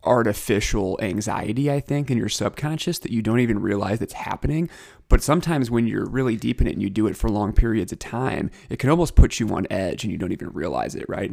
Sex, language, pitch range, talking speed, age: male, English, 100-120 Hz, 240 wpm, 30-49